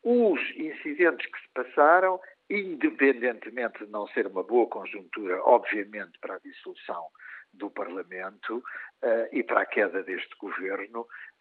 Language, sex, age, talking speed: Portuguese, male, 50-69, 125 wpm